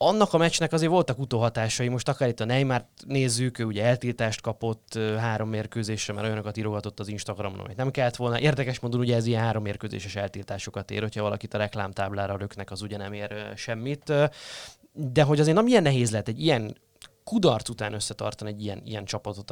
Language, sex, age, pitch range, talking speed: Hungarian, male, 20-39, 105-125 Hz, 190 wpm